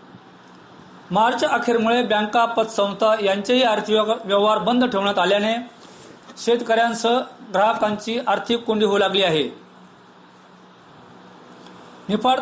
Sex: male